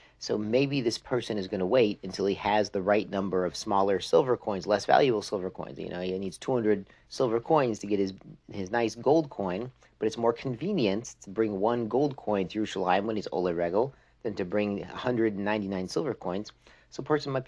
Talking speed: 210 wpm